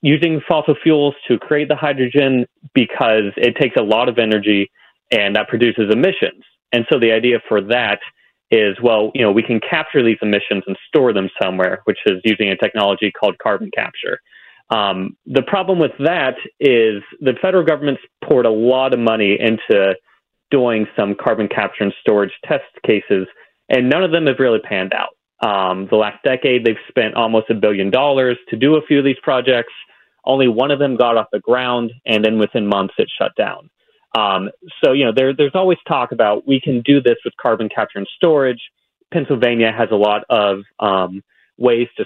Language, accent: English, American